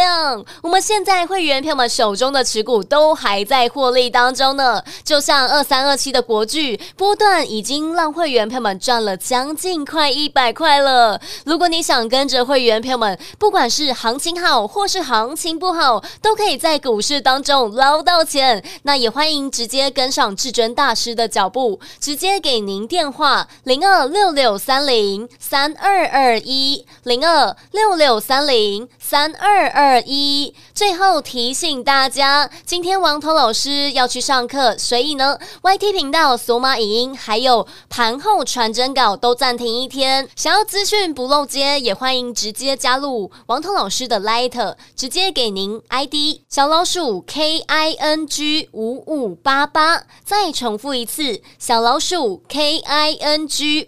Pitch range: 245-325 Hz